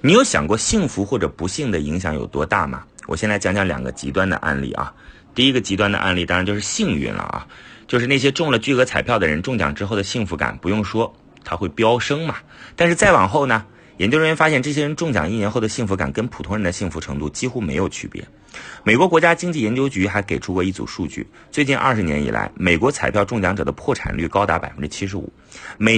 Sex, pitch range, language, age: male, 90-135 Hz, Chinese, 30-49